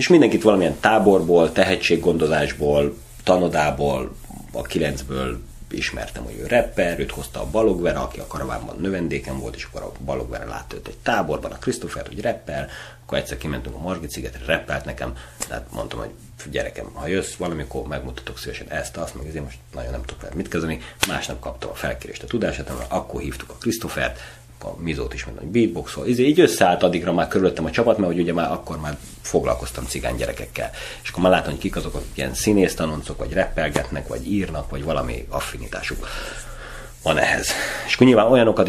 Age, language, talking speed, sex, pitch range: 30-49, Hungarian, 175 wpm, male, 65-90 Hz